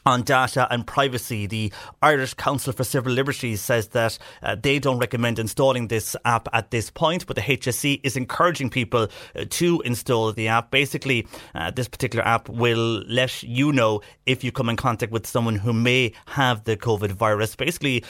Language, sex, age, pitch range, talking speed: English, male, 30-49, 115-140 Hz, 185 wpm